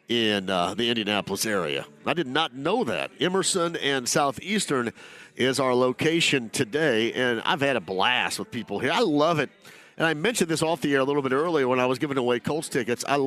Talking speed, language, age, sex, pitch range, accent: 215 wpm, English, 50-69, male, 140-185 Hz, American